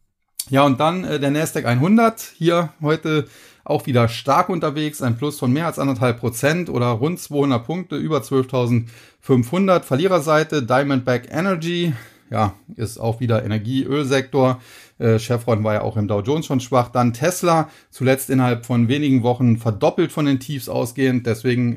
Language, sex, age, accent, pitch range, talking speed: German, male, 30-49, German, 115-145 Hz, 155 wpm